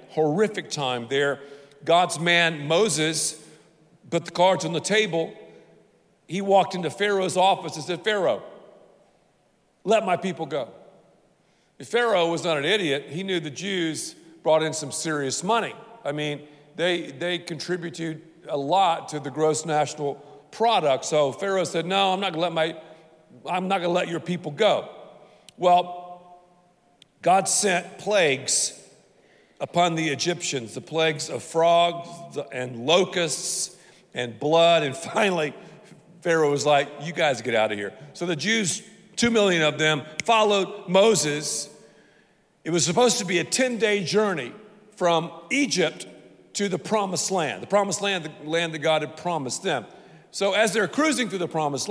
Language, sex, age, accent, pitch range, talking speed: English, male, 50-69, American, 155-195 Hz, 150 wpm